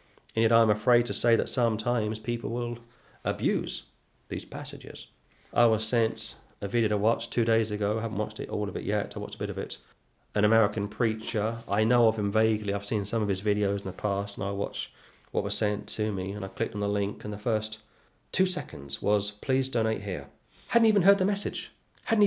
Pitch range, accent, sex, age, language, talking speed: 100-120 Hz, British, male, 40-59, English, 225 wpm